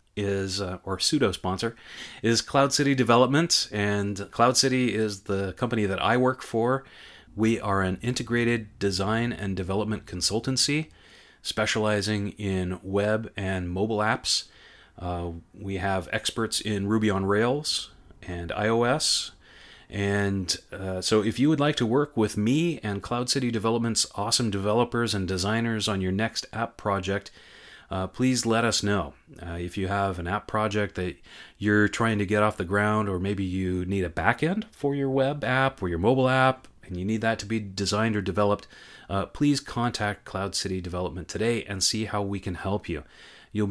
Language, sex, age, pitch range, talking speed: English, male, 30-49, 95-115 Hz, 170 wpm